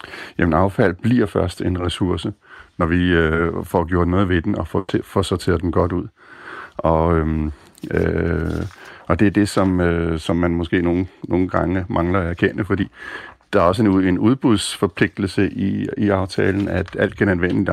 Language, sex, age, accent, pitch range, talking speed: Danish, male, 50-69, native, 85-100 Hz, 175 wpm